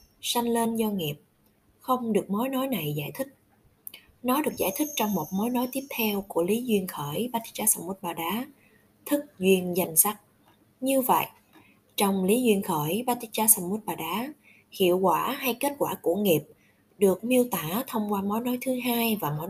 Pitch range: 180-240 Hz